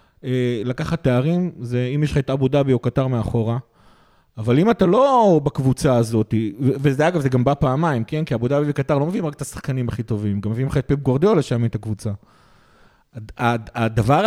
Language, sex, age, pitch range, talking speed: Hebrew, male, 30-49, 125-170 Hz, 195 wpm